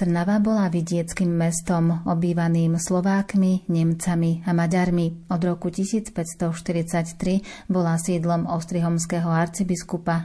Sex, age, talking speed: female, 30-49, 95 wpm